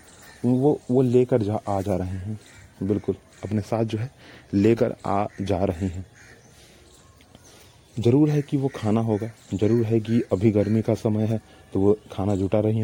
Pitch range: 100-120 Hz